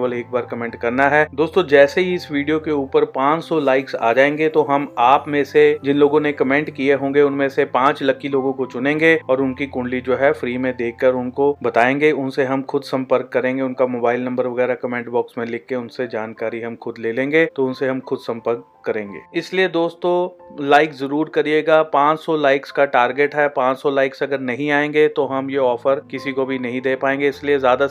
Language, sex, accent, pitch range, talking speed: Hindi, male, native, 130-150 Hz, 210 wpm